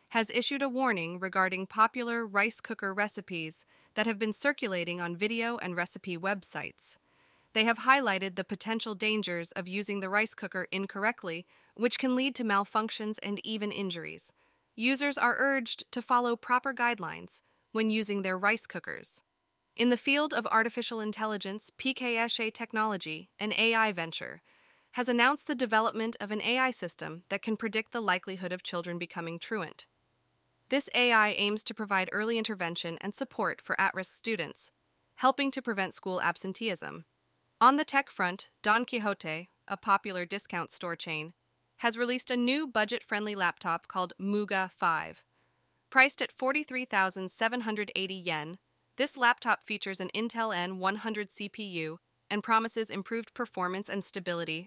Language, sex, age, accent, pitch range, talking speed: English, female, 20-39, American, 185-235 Hz, 145 wpm